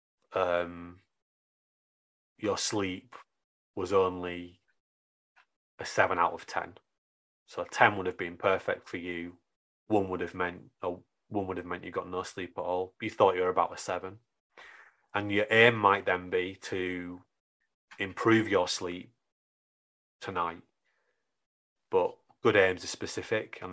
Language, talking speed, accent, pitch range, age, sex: English, 145 wpm, British, 90-100 Hz, 30-49, male